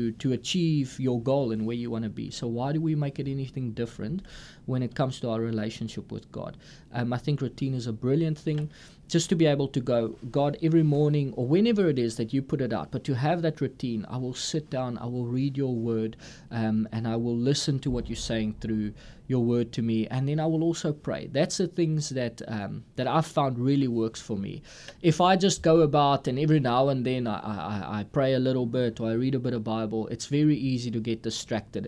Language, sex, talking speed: English, male, 240 wpm